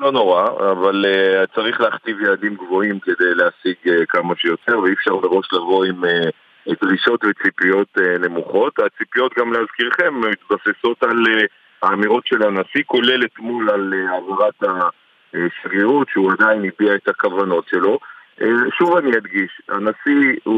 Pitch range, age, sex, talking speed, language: 105-130 Hz, 50-69, male, 145 wpm, Hebrew